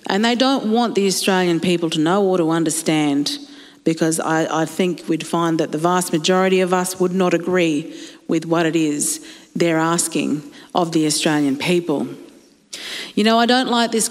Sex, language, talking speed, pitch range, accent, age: female, English, 185 wpm, 165-215 Hz, Australian, 40-59